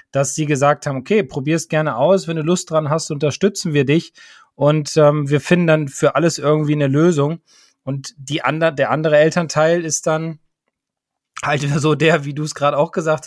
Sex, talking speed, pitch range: male, 200 wpm, 140-160 Hz